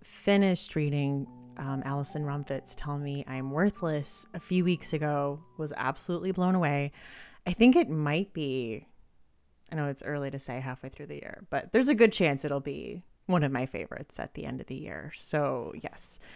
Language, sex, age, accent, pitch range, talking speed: English, female, 30-49, American, 130-165 Hz, 185 wpm